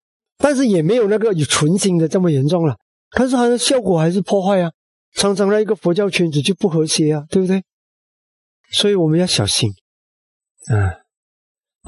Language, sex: Chinese, male